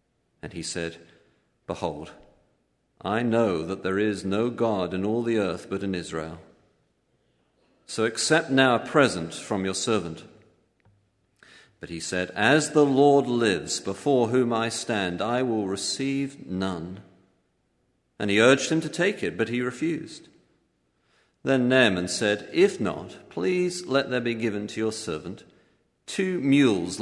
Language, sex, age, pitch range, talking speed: English, male, 50-69, 95-120 Hz, 145 wpm